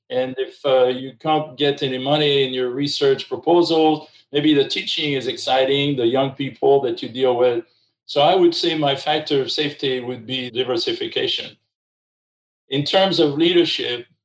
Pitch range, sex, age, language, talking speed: 120-155 Hz, male, 50-69, English, 165 wpm